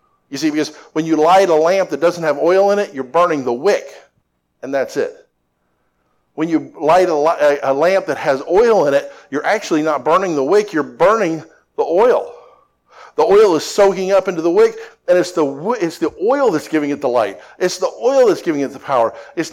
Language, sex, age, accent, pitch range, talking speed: English, male, 50-69, American, 140-195 Hz, 210 wpm